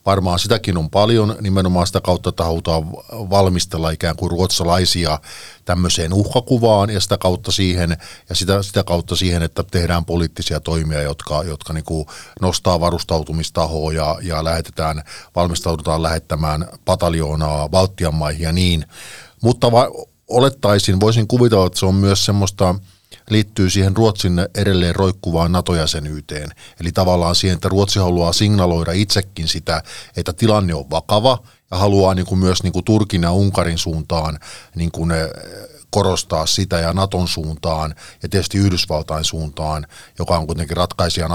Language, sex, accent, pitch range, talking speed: Finnish, male, native, 80-100 Hz, 140 wpm